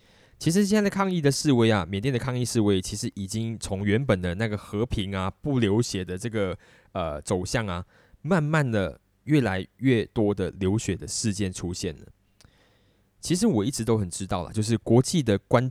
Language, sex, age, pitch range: Chinese, male, 20-39, 100-130 Hz